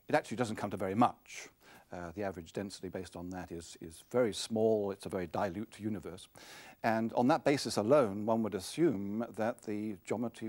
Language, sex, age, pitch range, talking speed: English, male, 60-79, 105-150 Hz, 195 wpm